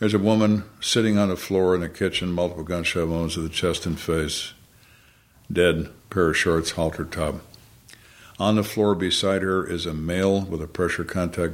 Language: English